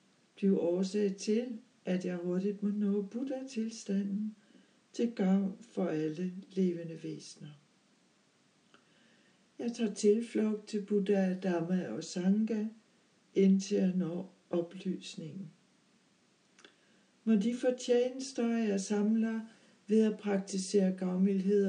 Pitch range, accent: 185-220 Hz, native